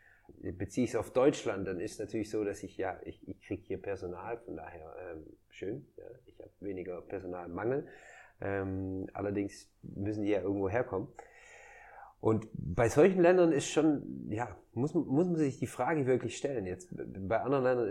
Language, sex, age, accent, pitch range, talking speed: German, male, 30-49, German, 95-110 Hz, 180 wpm